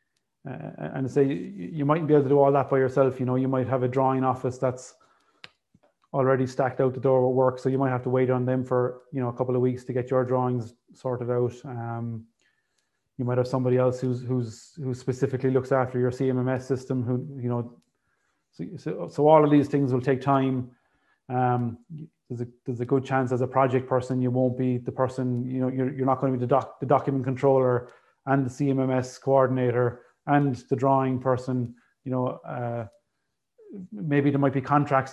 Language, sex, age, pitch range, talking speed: English, male, 20-39, 125-135 Hz, 210 wpm